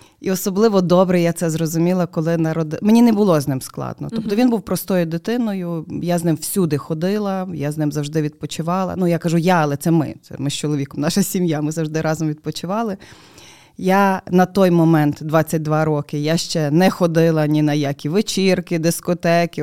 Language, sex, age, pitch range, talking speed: Ukrainian, female, 20-39, 155-200 Hz, 185 wpm